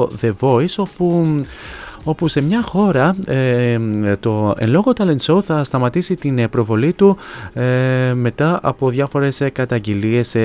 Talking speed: 115 wpm